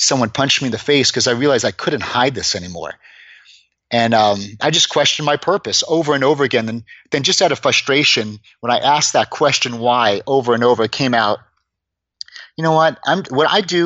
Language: English